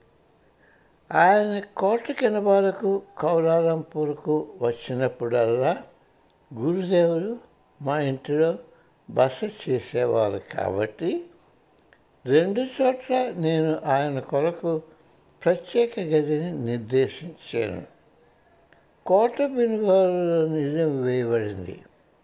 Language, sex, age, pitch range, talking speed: Hindi, male, 60-79, 135-200 Hz, 45 wpm